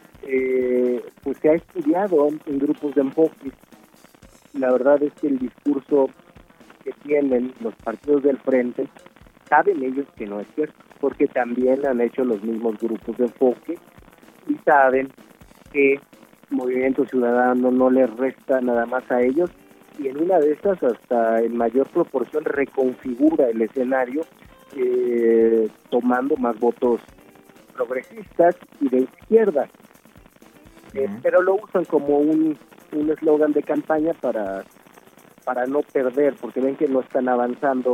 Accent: Mexican